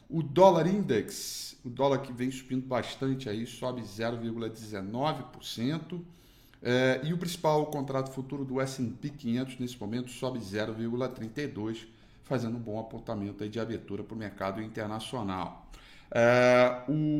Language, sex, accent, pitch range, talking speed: Portuguese, male, Brazilian, 110-135 Hz, 135 wpm